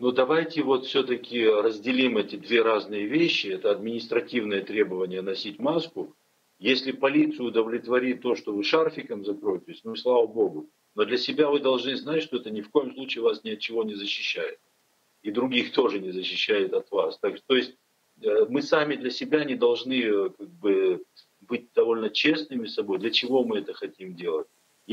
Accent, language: native, Ukrainian